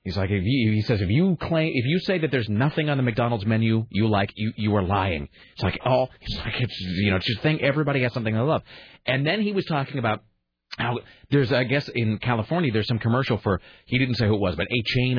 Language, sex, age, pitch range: English, male, 30-49, 110-150 Hz